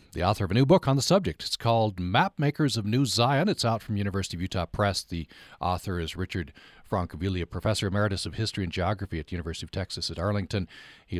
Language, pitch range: English, 90-120 Hz